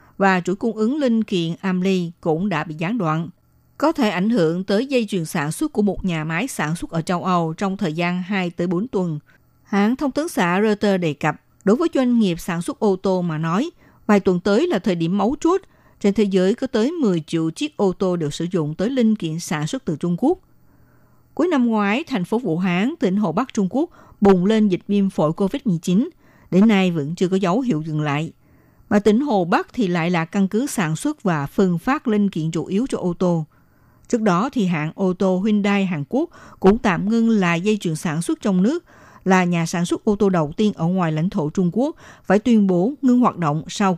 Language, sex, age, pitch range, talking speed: Vietnamese, female, 60-79, 170-220 Hz, 230 wpm